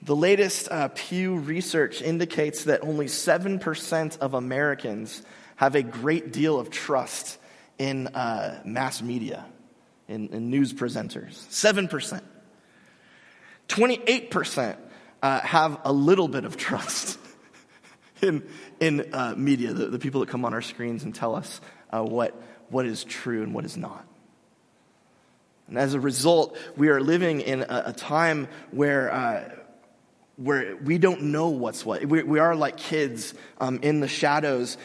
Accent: American